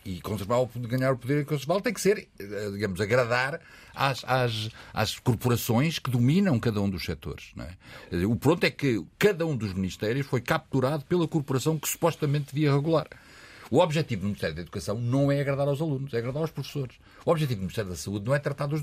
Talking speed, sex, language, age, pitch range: 205 wpm, male, Portuguese, 60-79, 105-155 Hz